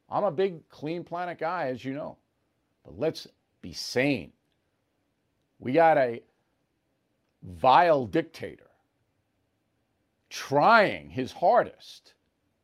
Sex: male